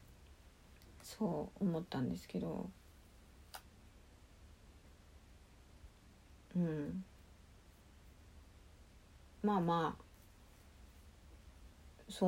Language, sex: Japanese, female